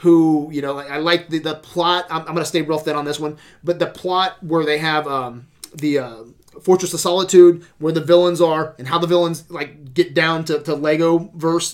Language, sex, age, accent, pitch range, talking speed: English, male, 30-49, American, 150-180 Hz, 225 wpm